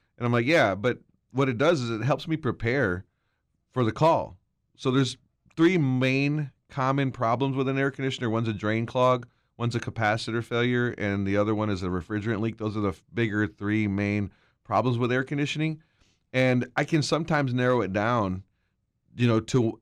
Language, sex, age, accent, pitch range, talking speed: English, male, 30-49, American, 110-135 Hz, 190 wpm